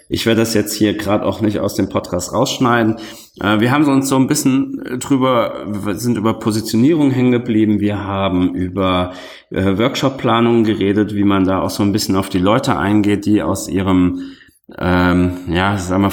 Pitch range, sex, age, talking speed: 95-125 Hz, male, 30-49, 175 wpm